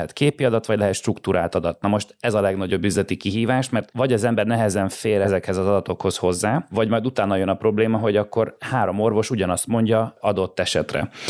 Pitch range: 95-110 Hz